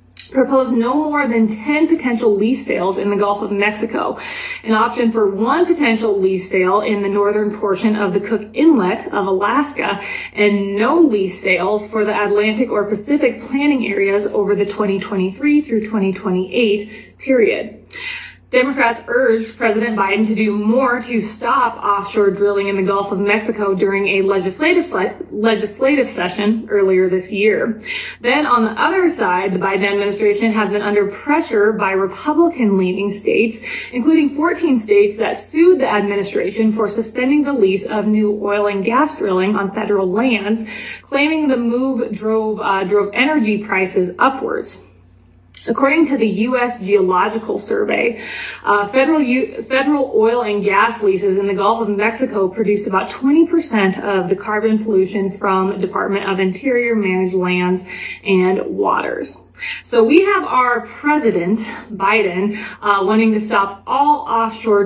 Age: 30-49